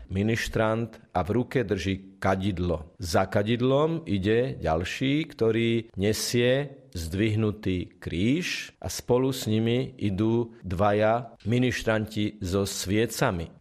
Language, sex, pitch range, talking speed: Slovak, male, 100-120 Hz, 100 wpm